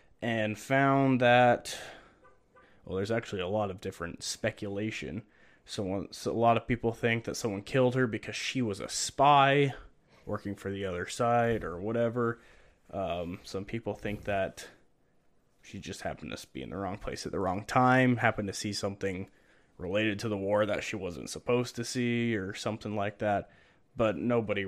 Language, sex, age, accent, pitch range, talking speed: English, male, 20-39, American, 100-120 Hz, 175 wpm